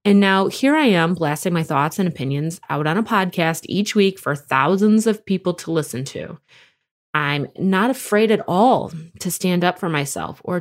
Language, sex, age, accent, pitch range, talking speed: English, female, 20-39, American, 165-210 Hz, 190 wpm